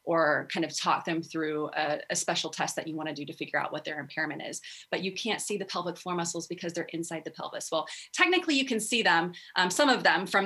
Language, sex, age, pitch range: English, female, 30-49, 160-190 Hz